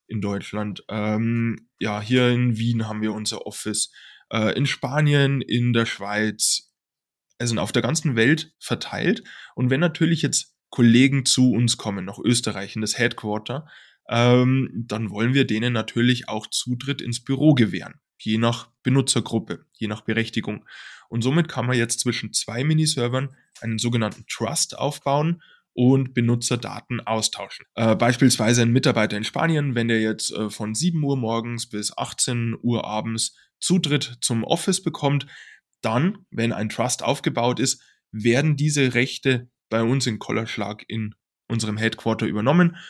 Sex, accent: male, German